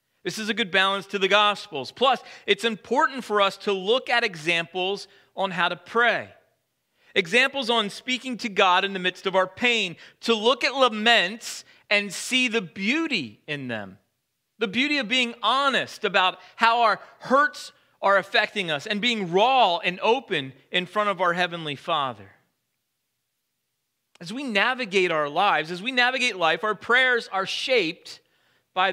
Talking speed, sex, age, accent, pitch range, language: 165 wpm, male, 40-59, American, 175-235 Hz, English